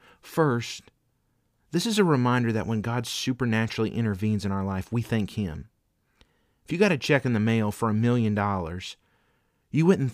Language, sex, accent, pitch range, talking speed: English, male, American, 100-130 Hz, 180 wpm